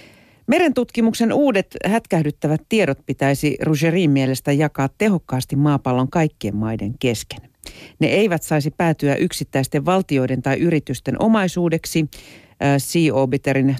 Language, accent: Finnish, native